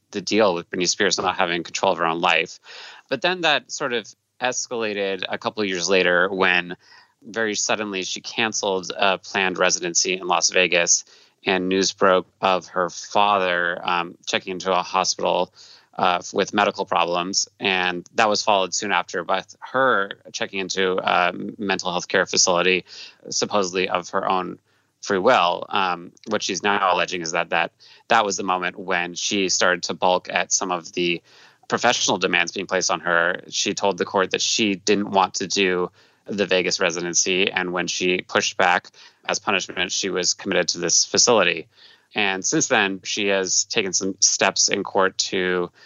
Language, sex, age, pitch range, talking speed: English, male, 30-49, 90-100 Hz, 175 wpm